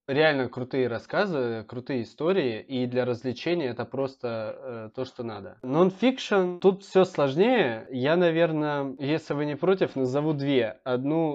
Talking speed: 145 wpm